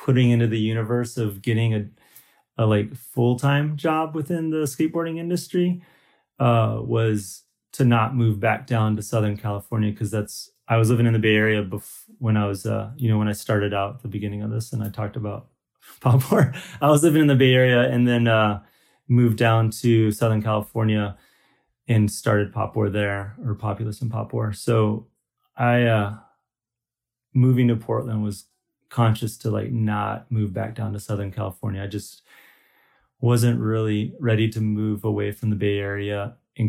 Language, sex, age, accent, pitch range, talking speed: English, male, 30-49, American, 105-120 Hz, 180 wpm